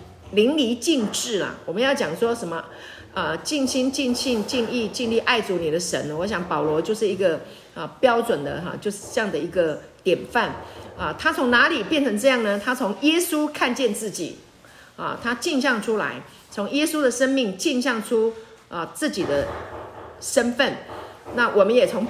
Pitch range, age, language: 185-265 Hz, 50-69, Chinese